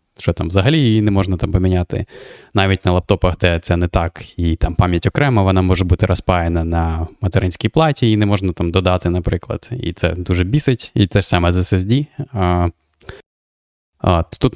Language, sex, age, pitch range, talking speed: Ukrainian, male, 20-39, 90-105 Hz, 180 wpm